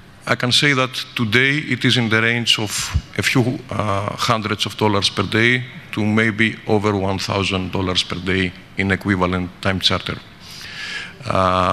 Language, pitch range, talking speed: English, 100-115 Hz, 155 wpm